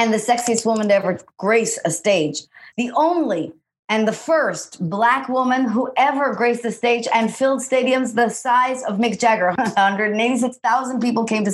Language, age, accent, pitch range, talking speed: English, 40-59, American, 185-235 Hz, 170 wpm